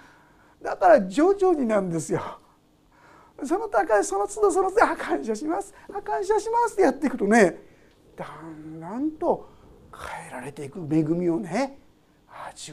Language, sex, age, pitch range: Japanese, male, 50-69, 190-320 Hz